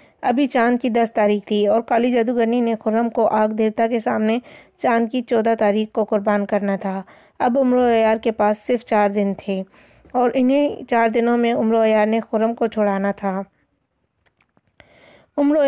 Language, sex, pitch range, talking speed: Urdu, female, 215-245 Hz, 170 wpm